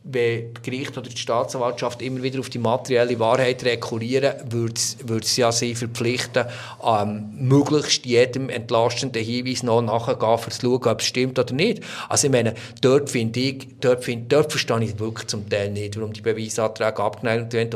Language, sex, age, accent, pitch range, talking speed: German, male, 50-69, German, 120-150 Hz, 170 wpm